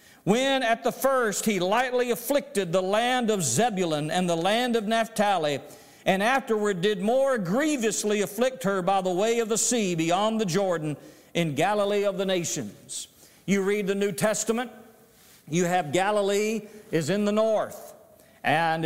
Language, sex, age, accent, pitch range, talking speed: English, male, 50-69, American, 175-230 Hz, 160 wpm